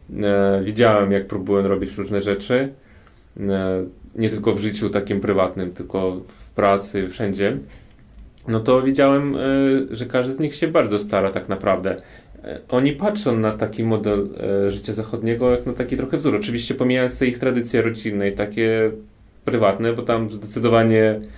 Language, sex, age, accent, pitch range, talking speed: Polish, male, 30-49, native, 100-115 Hz, 145 wpm